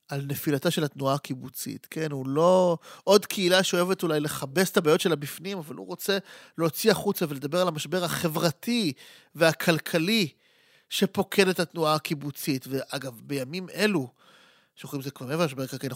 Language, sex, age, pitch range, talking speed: Hebrew, male, 30-49, 145-195 Hz, 140 wpm